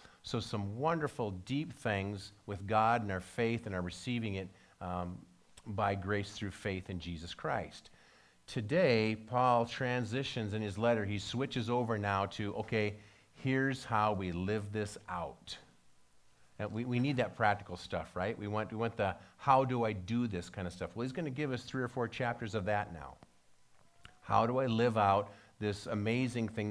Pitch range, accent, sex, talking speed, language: 100-120 Hz, American, male, 180 wpm, English